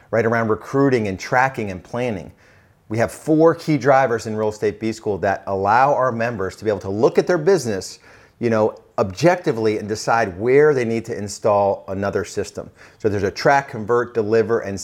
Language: English